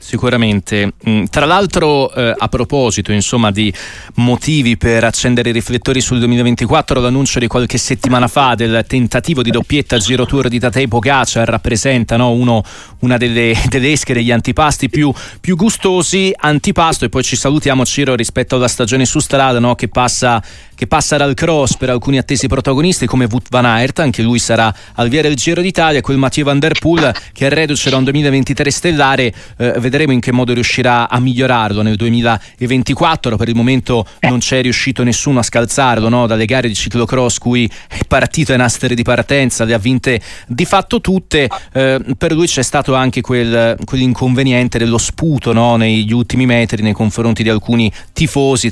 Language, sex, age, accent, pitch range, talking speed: Italian, male, 30-49, native, 115-135 Hz, 175 wpm